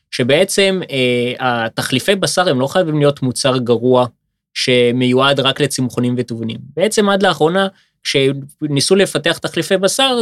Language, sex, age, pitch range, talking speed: Hebrew, male, 20-39, 120-170 Hz, 115 wpm